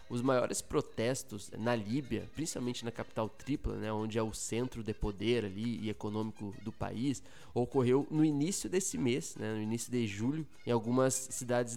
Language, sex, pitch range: Portuguese, male, 110-125 Hz